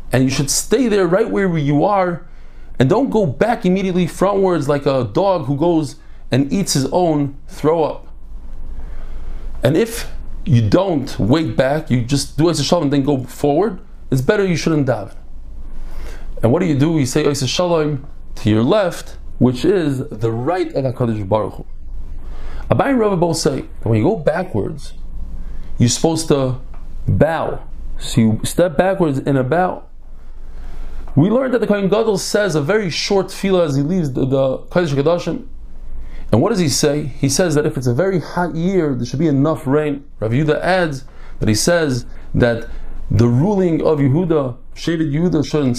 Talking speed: 175 wpm